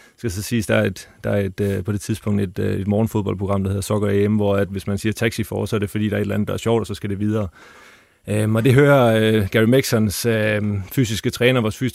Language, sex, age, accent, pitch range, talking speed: Danish, male, 30-49, native, 105-115 Hz, 285 wpm